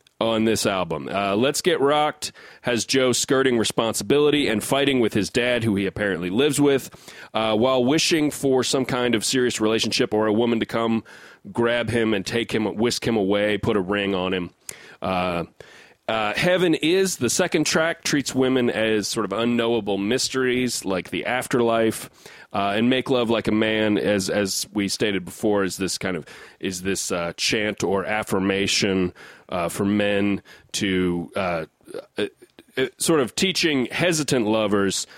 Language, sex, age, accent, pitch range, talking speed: English, male, 30-49, American, 100-125 Hz, 170 wpm